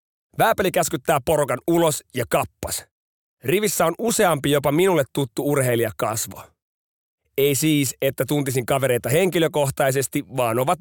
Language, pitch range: Finnish, 135-170 Hz